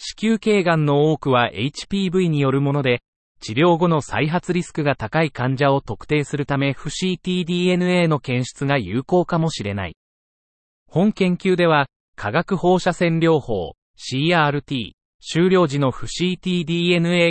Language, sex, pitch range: Japanese, male, 130-175 Hz